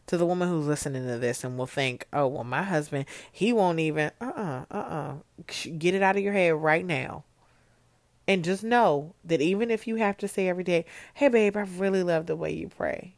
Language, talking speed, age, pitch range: English, 230 wpm, 30-49, 140-195 Hz